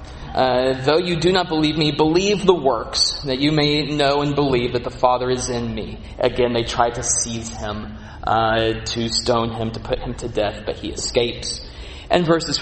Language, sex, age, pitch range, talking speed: English, male, 30-49, 120-145 Hz, 200 wpm